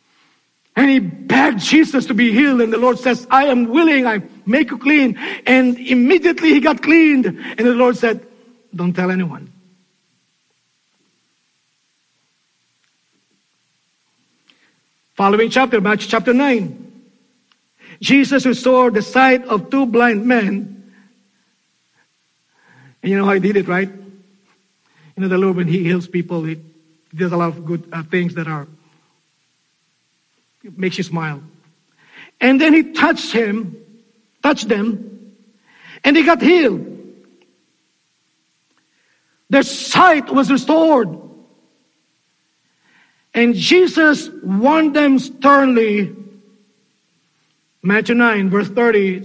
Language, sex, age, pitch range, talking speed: English, male, 50-69, 185-255 Hz, 115 wpm